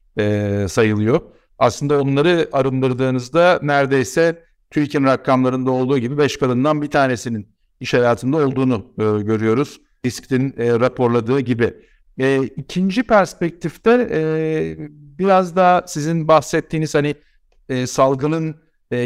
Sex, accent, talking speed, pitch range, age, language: male, native, 110 wpm, 120-155 Hz, 60-79, Turkish